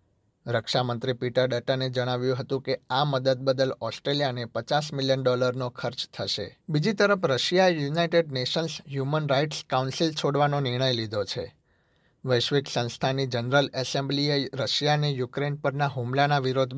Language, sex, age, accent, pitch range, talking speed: Gujarati, male, 60-79, native, 125-150 Hz, 135 wpm